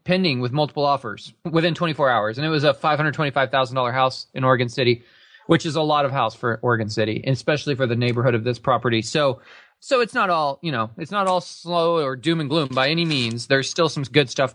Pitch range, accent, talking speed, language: 130-170 Hz, American, 225 wpm, English